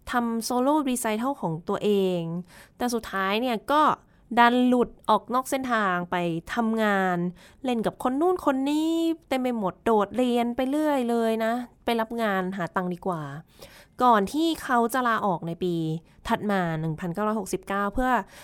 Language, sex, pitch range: Thai, female, 190-245 Hz